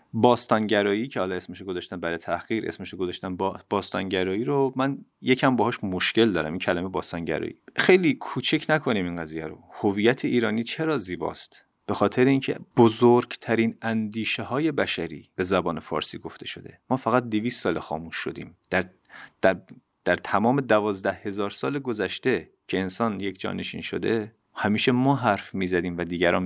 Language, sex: Persian, male